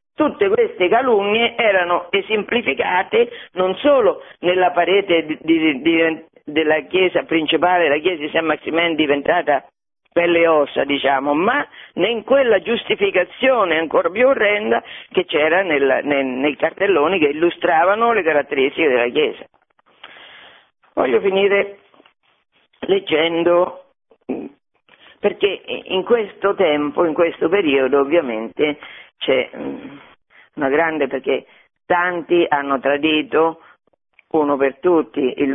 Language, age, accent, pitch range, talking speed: Italian, 50-69, native, 145-200 Hz, 105 wpm